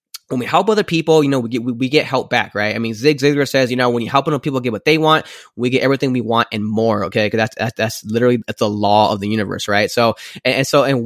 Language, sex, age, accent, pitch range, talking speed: English, male, 20-39, American, 115-150 Hz, 305 wpm